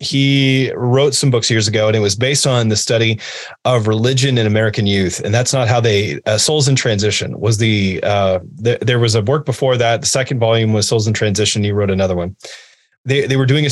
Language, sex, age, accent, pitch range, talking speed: English, male, 30-49, American, 110-140 Hz, 230 wpm